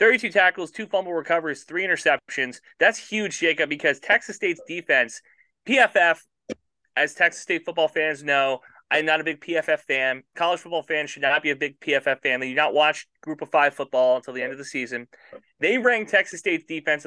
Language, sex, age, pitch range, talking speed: English, male, 30-49, 140-180 Hz, 195 wpm